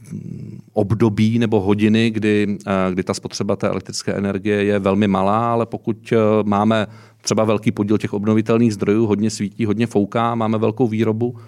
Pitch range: 95-115 Hz